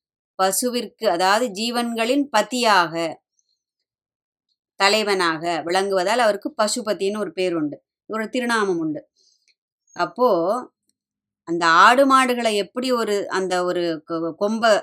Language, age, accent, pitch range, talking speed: Tamil, 20-39, native, 180-245 Hz, 90 wpm